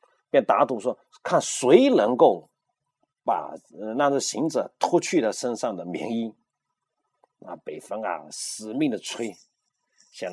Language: Chinese